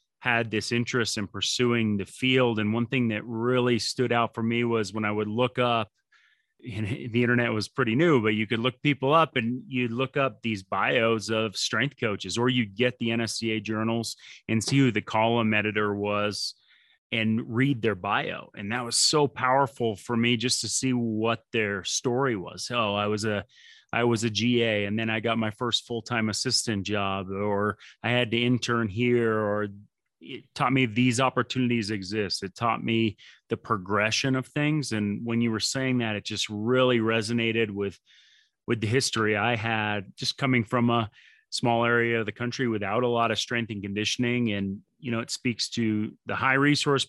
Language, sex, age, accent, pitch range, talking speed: English, male, 30-49, American, 110-125 Hz, 195 wpm